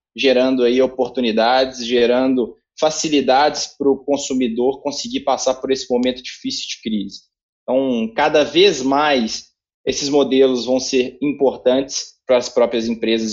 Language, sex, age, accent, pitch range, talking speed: Portuguese, male, 20-39, Brazilian, 125-150 Hz, 125 wpm